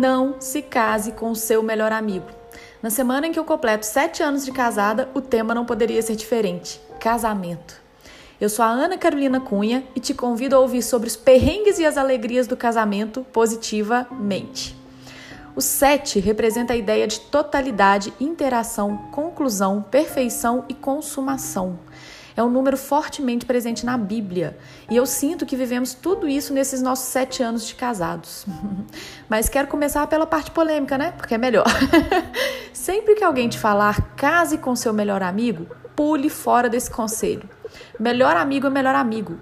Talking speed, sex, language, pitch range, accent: 160 wpm, female, Portuguese, 220-275 Hz, Brazilian